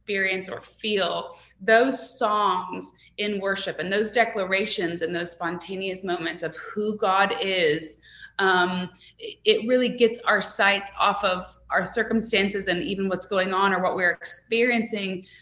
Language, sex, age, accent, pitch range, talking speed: English, female, 20-39, American, 180-215 Hz, 145 wpm